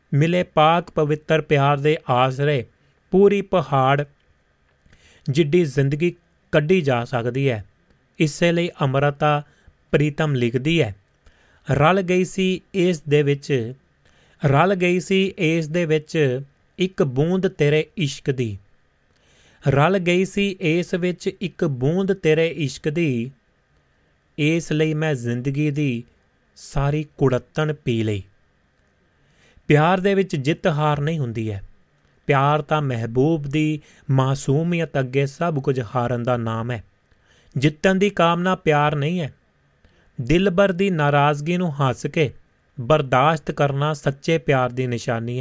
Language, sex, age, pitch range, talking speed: Punjabi, male, 30-49, 125-170 Hz, 105 wpm